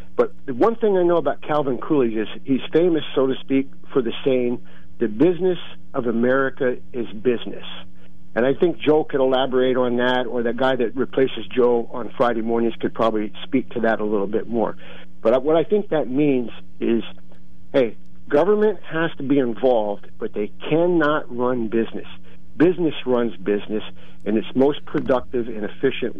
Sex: male